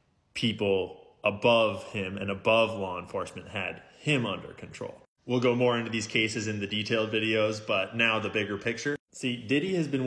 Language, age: English, 20-39